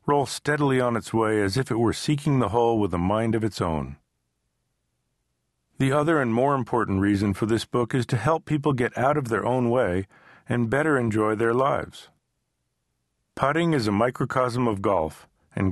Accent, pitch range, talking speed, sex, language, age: American, 100-130 Hz, 185 wpm, male, English, 50-69